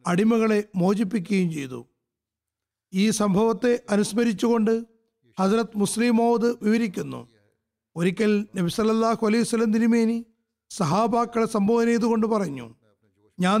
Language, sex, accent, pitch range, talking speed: Malayalam, male, native, 175-230 Hz, 85 wpm